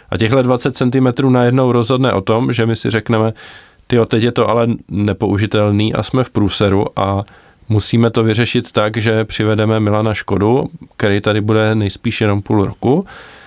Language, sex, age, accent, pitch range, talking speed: Czech, male, 20-39, native, 105-130 Hz, 170 wpm